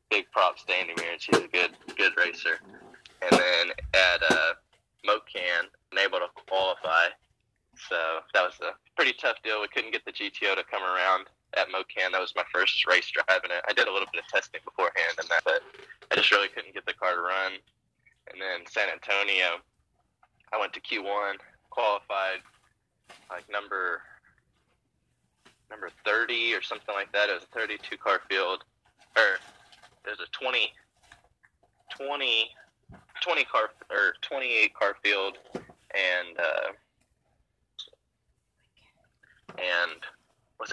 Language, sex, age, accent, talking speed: English, male, 10-29, American, 150 wpm